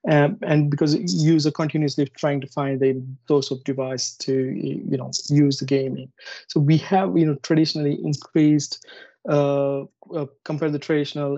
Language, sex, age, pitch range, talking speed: English, male, 20-39, 140-150 Hz, 155 wpm